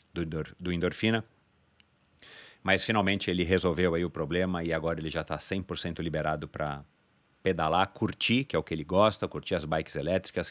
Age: 40-59